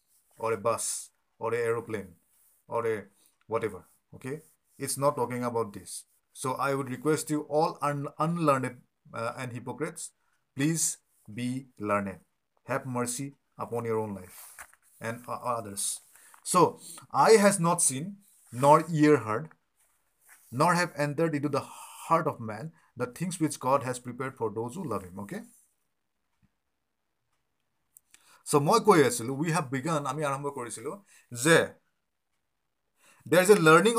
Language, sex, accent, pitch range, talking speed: English, male, Indian, 125-165 Hz, 130 wpm